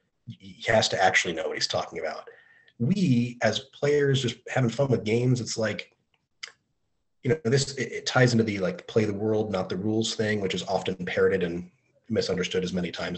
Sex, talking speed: male, 200 wpm